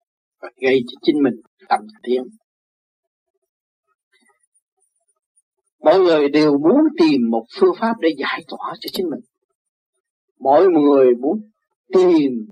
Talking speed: 115 wpm